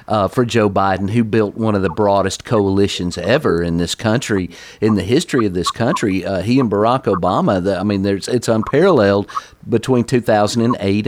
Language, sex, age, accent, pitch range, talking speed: English, male, 40-59, American, 100-155 Hz, 185 wpm